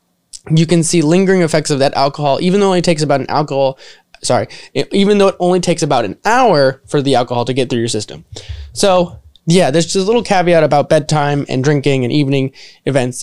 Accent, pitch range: American, 135-170 Hz